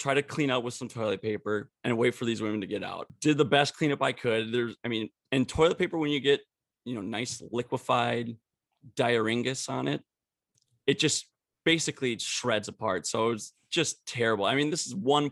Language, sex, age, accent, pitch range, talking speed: English, male, 20-39, American, 115-140 Hz, 205 wpm